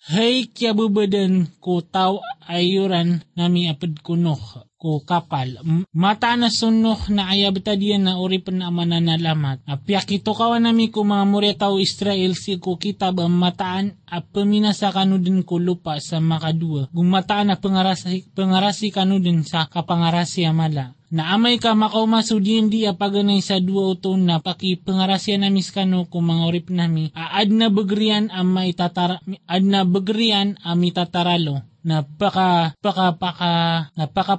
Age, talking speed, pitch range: 20-39, 135 wpm, 170-205 Hz